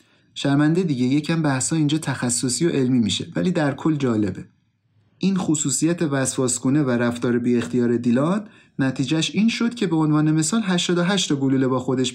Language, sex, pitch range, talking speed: Persian, male, 125-155 Hz, 165 wpm